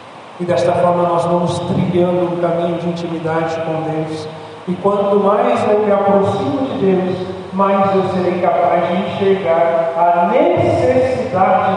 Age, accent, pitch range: 40-59, Brazilian, 175-230 Hz